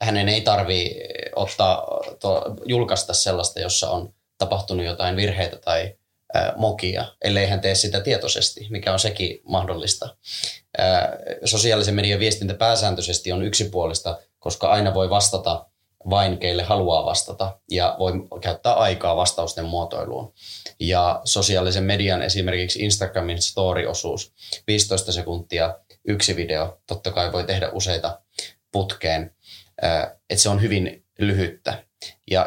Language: Finnish